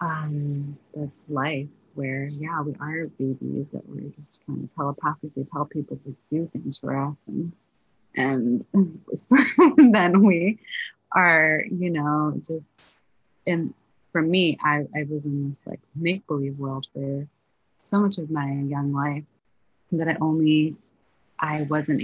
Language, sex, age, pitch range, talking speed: English, female, 30-49, 140-155 Hz, 145 wpm